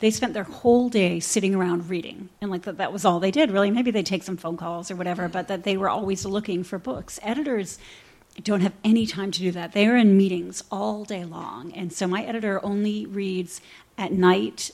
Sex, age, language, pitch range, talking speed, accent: female, 40-59, English, 180-205 Hz, 230 wpm, American